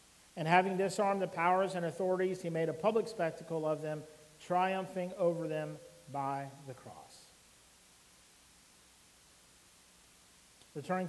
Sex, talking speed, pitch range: male, 115 wpm, 150-185 Hz